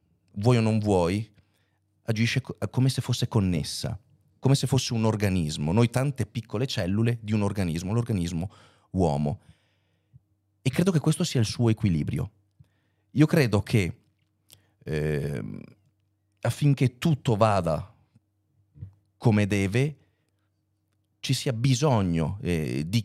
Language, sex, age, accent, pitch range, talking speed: Italian, male, 40-59, native, 95-120 Hz, 115 wpm